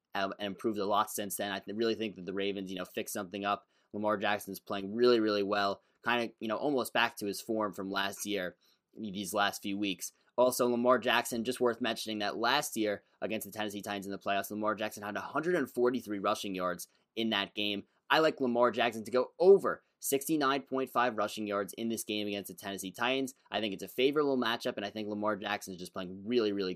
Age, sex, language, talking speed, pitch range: 20-39, male, English, 220 wpm, 100-125 Hz